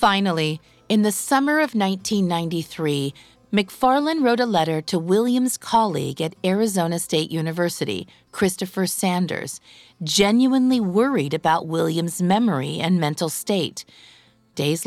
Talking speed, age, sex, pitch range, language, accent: 115 wpm, 40-59, female, 155-205 Hz, English, American